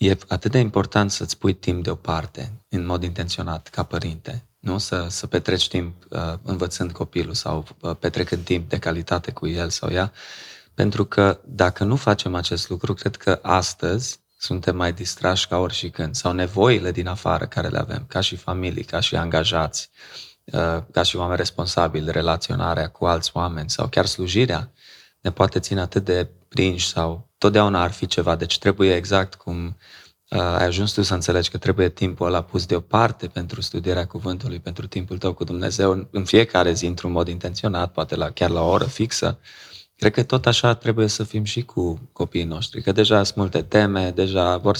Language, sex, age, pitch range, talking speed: Romanian, male, 20-39, 90-105 Hz, 180 wpm